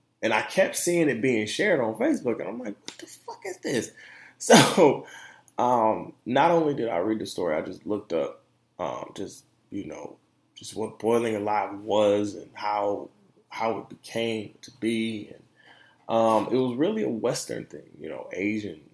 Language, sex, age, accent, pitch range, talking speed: English, male, 20-39, American, 105-130 Hz, 180 wpm